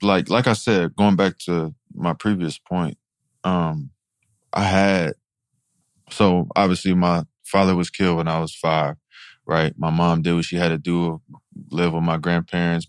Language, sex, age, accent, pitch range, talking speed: English, male, 20-39, American, 80-95 Hz, 170 wpm